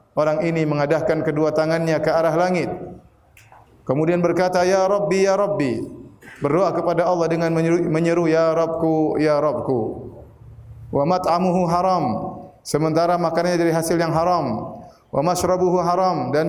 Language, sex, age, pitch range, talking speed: Indonesian, male, 30-49, 145-180 Hz, 135 wpm